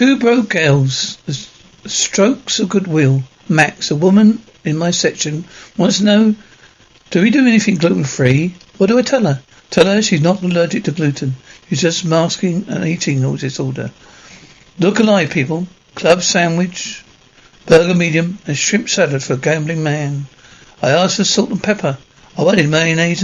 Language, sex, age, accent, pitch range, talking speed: English, male, 60-79, British, 150-195 Hz, 160 wpm